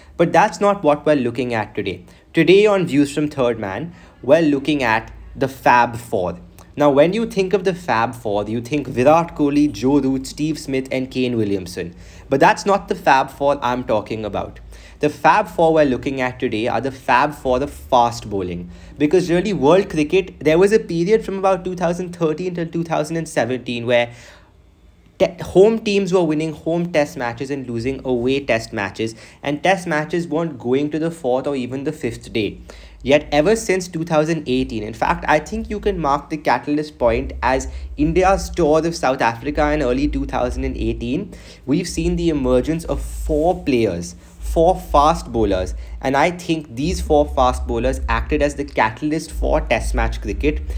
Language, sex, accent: English, male, Indian